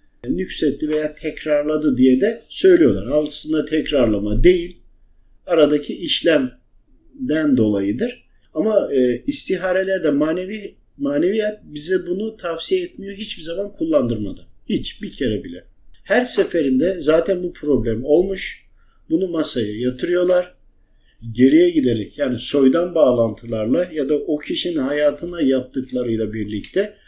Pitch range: 140-205 Hz